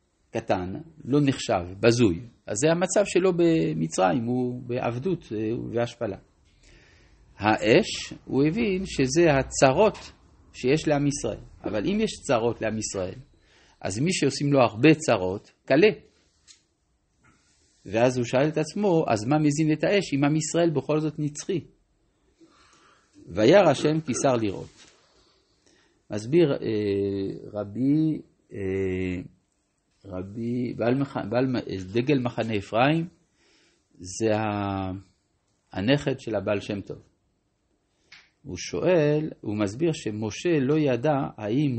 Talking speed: 105 wpm